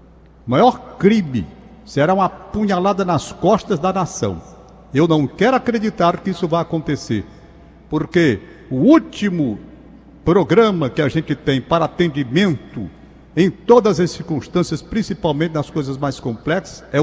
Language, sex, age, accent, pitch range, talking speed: Portuguese, male, 60-79, Brazilian, 155-215 Hz, 135 wpm